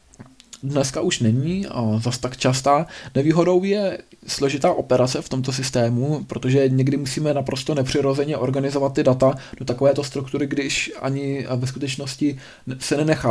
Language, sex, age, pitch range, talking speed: Czech, male, 20-39, 120-145 Hz, 135 wpm